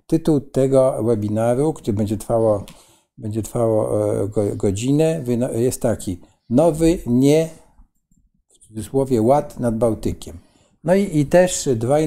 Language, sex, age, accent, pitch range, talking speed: Polish, male, 50-69, native, 110-140 Hz, 110 wpm